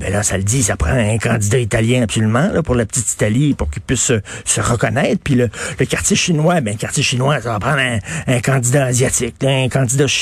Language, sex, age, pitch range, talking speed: French, male, 60-79, 125-175 Hz, 235 wpm